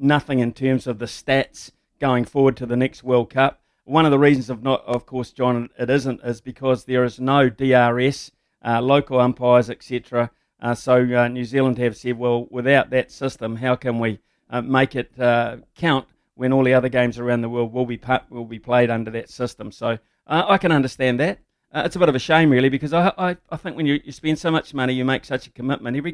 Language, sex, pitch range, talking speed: English, male, 125-150 Hz, 235 wpm